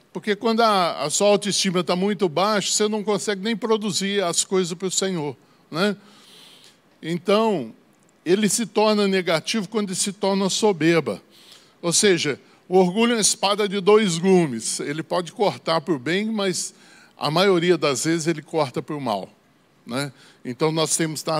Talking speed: 170 wpm